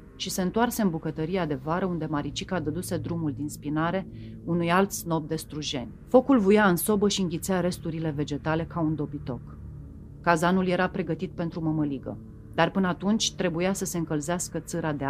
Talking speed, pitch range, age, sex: 165 wpm, 145-180 Hz, 40-59, female